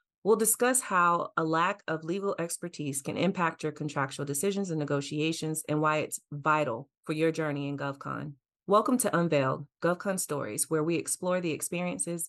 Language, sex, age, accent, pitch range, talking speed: English, female, 30-49, American, 150-180 Hz, 165 wpm